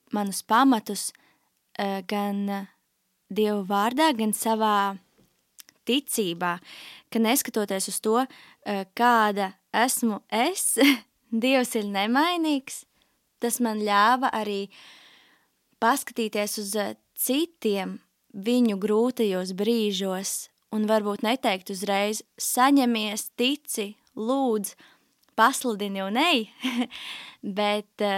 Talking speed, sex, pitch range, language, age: 85 wpm, female, 200-235 Hz, Russian, 20-39